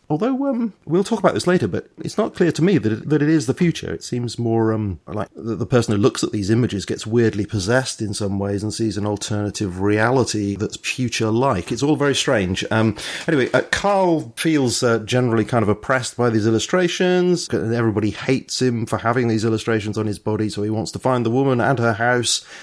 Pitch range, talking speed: 100-130 Hz, 220 wpm